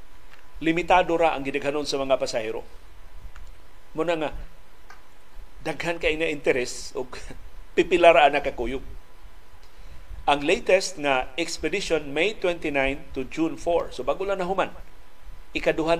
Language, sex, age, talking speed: Filipino, male, 50-69, 115 wpm